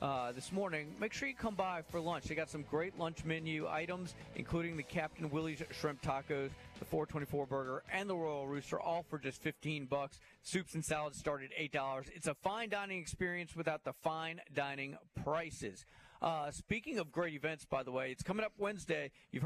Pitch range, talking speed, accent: 150-180 Hz, 200 wpm, American